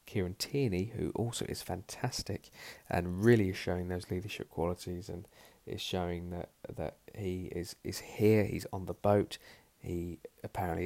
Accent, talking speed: British, 155 wpm